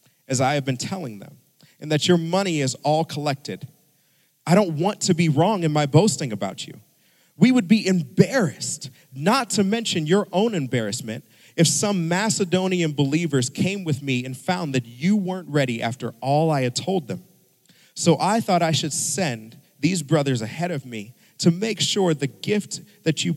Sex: male